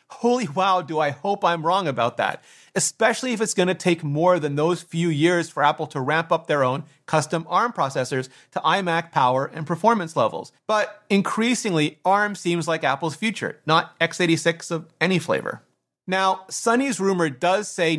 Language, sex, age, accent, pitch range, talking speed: English, male, 30-49, American, 155-195 Hz, 175 wpm